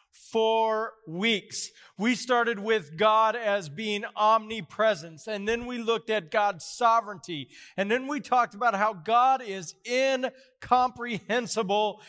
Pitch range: 200-245 Hz